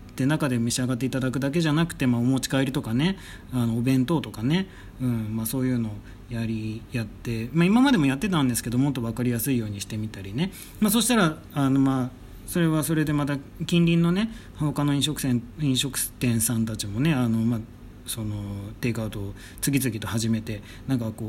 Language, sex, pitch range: Japanese, male, 110-150 Hz